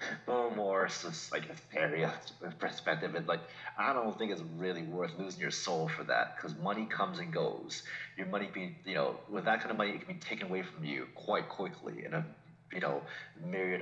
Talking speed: 210 wpm